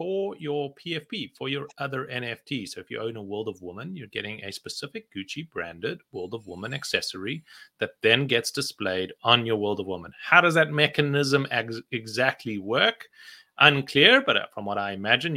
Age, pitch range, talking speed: 30-49, 110-165 Hz, 185 wpm